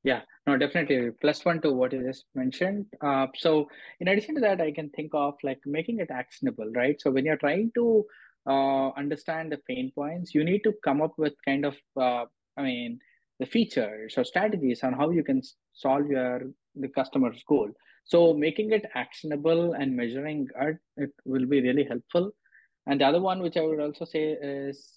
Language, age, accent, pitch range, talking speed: English, 20-39, Indian, 135-180 Hz, 195 wpm